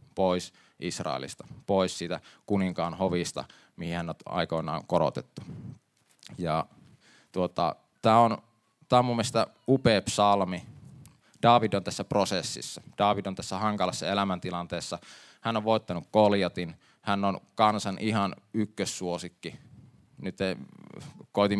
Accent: native